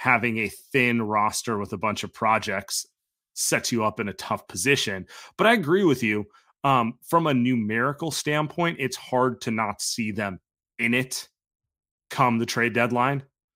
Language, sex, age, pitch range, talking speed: English, male, 30-49, 110-140 Hz, 170 wpm